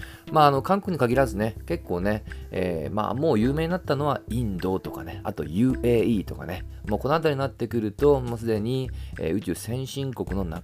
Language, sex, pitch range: Japanese, male, 95-145 Hz